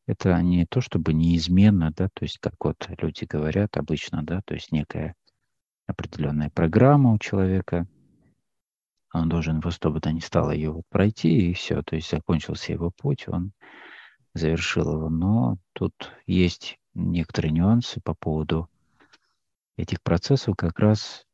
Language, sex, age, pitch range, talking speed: Russian, male, 50-69, 80-100 Hz, 145 wpm